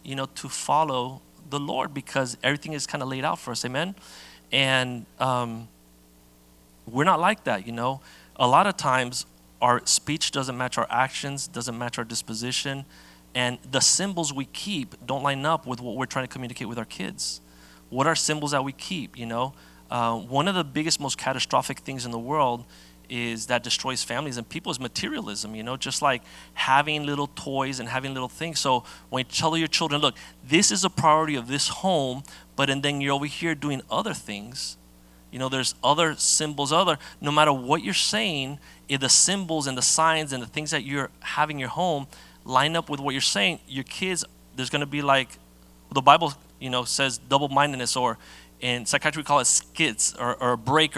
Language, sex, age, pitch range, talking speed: English, male, 30-49, 120-145 Hz, 200 wpm